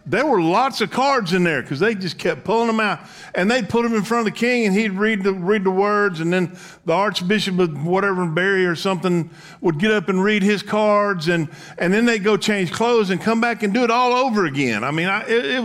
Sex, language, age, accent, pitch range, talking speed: male, English, 50-69, American, 160-215 Hz, 260 wpm